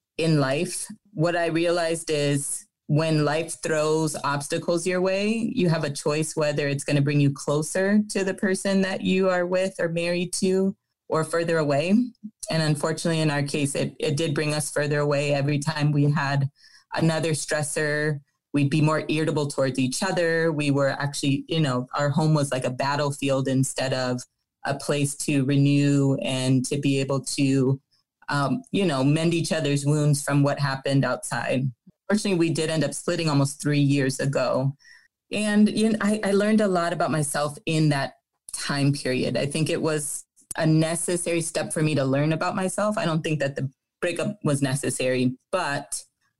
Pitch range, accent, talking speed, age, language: 140-170 Hz, American, 180 wpm, 20-39, English